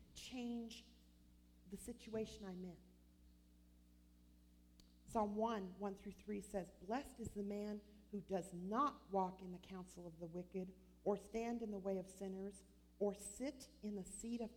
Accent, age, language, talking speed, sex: American, 50-69, English, 155 wpm, female